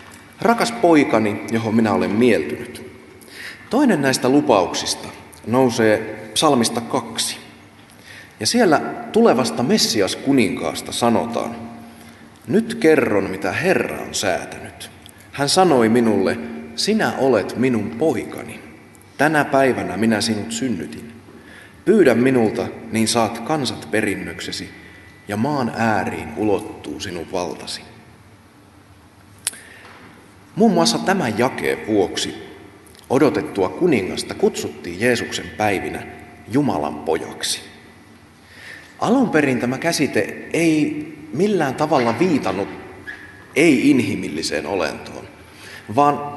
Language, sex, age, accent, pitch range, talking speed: Finnish, male, 30-49, native, 105-145 Hz, 90 wpm